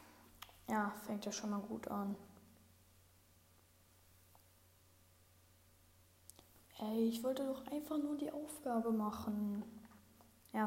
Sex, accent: female, German